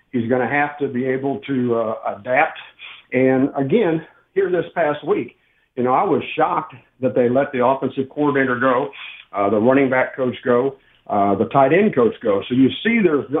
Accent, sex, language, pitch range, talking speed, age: American, male, English, 125-150 Hz, 195 wpm, 50-69